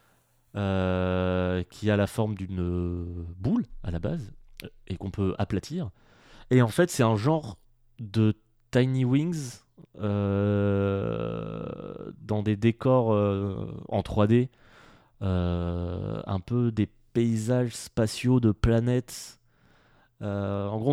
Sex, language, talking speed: male, French, 120 wpm